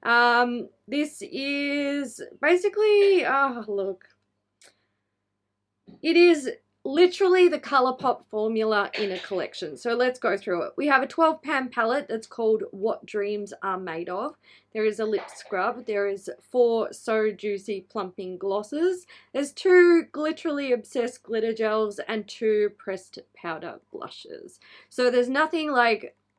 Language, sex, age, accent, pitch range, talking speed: English, female, 20-39, Australian, 190-275 Hz, 140 wpm